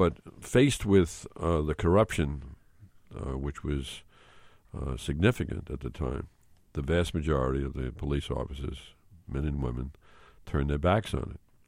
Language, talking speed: English, 150 wpm